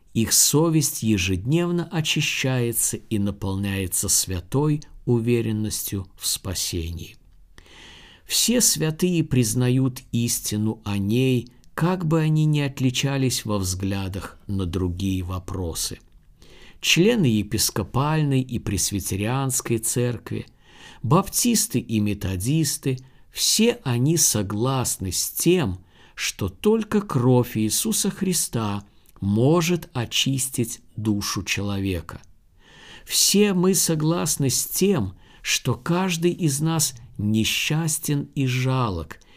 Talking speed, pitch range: 95 wpm, 100-150 Hz